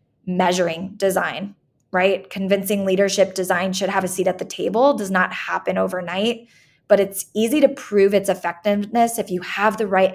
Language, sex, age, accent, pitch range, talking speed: English, female, 20-39, American, 180-210 Hz, 170 wpm